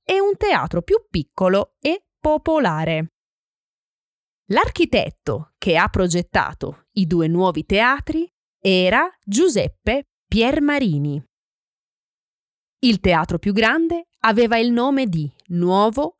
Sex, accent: female, native